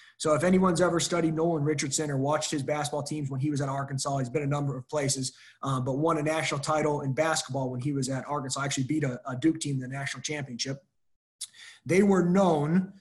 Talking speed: 225 wpm